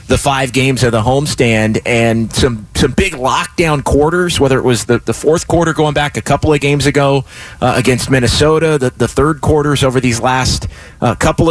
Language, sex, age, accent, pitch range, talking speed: English, male, 30-49, American, 130-160 Hz, 200 wpm